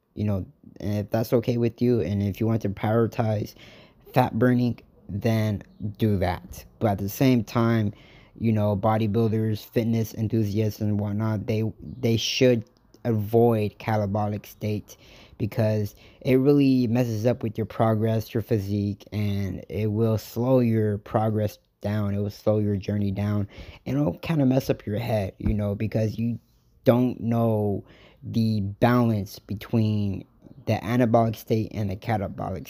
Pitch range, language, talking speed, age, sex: 105-115 Hz, English, 150 wpm, 20-39, male